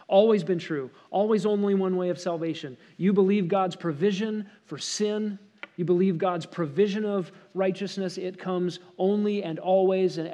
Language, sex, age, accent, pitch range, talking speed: English, male, 40-59, American, 165-200 Hz, 155 wpm